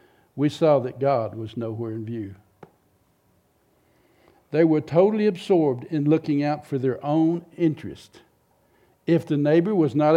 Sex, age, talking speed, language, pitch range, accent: male, 60-79, 140 wpm, English, 120-165 Hz, American